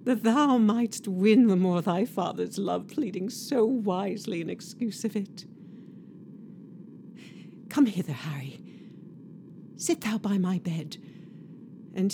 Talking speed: 125 wpm